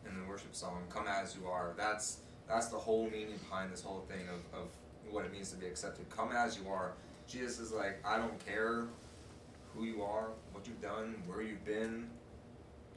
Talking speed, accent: 205 wpm, American